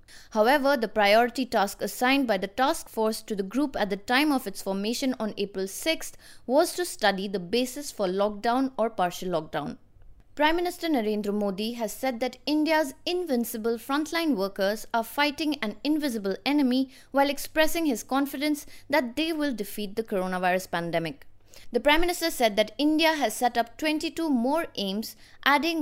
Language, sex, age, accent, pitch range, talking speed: English, female, 20-39, Indian, 210-300 Hz, 165 wpm